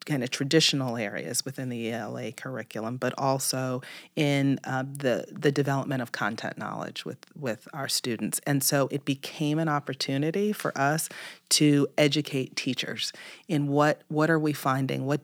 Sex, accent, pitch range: female, American, 135-155 Hz